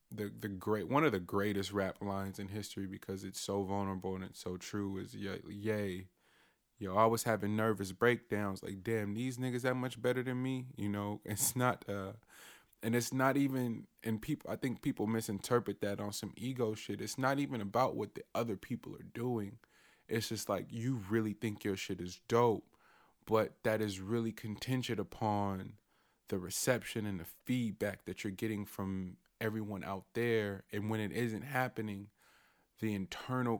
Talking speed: 180 wpm